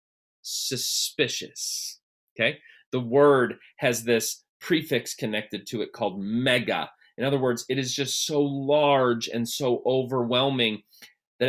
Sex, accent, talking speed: male, American, 125 wpm